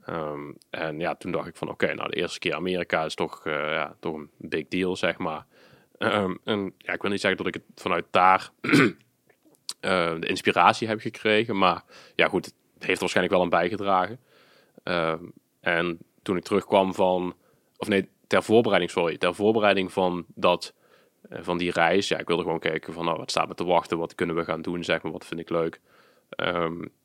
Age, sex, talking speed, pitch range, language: 20-39, male, 210 wpm, 85-100 Hz, Dutch